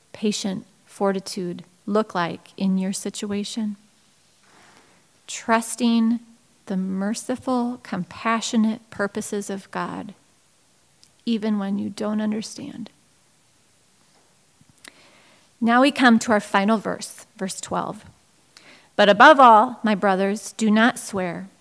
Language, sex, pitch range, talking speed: English, female, 195-245 Hz, 100 wpm